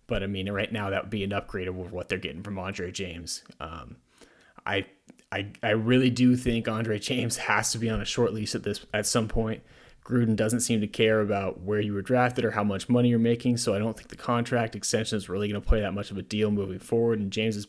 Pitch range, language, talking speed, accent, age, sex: 100-120 Hz, English, 255 wpm, American, 30-49, male